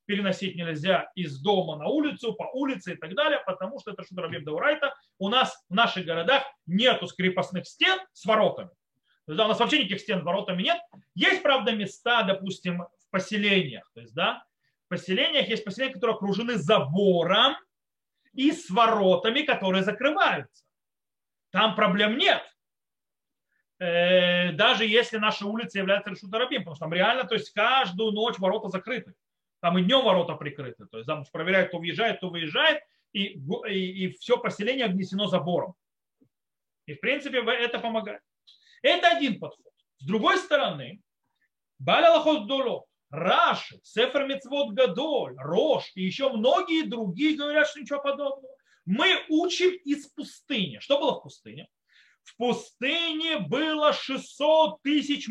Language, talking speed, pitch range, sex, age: Russian, 145 wpm, 185-280 Hz, male, 30-49